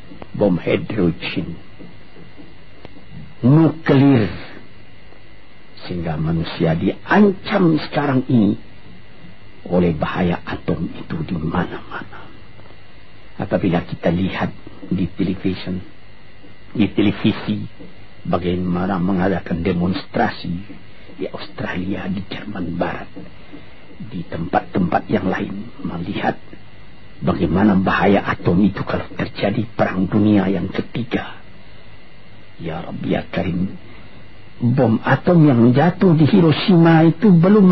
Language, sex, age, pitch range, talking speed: Malay, male, 50-69, 95-160 Hz, 85 wpm